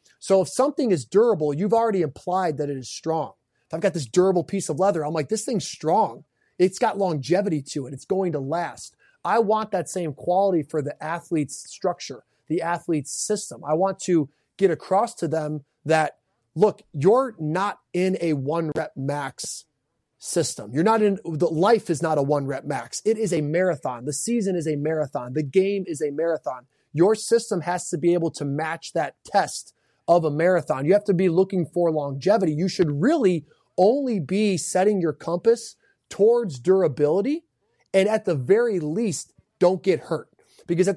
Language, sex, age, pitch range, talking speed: English, male, 20-39, 155-190 Hz, 185 wpm